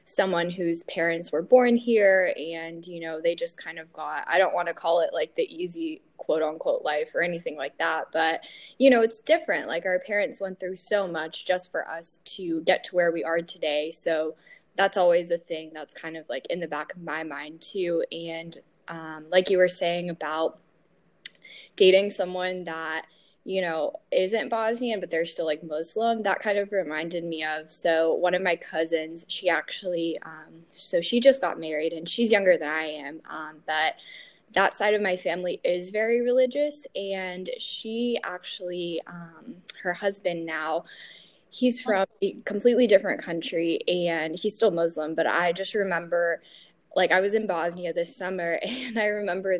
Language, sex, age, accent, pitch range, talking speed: English, female, 10-29, American, 165-205 Hz, 185 wpm